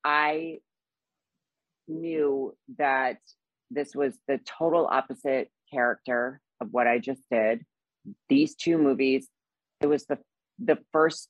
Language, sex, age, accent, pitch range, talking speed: English, female, 40-59, American, 125-145 Hz, 115 wpm